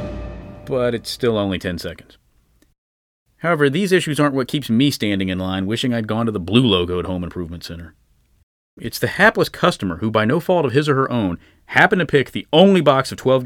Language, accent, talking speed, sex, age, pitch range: English, American, 215 wpm, male, 30-49, 85-130 Hz